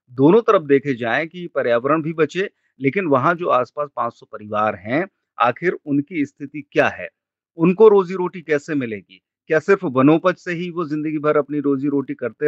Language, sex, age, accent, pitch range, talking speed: Hindi, male, 40-59, native, 125-150 Hz, 180 wpm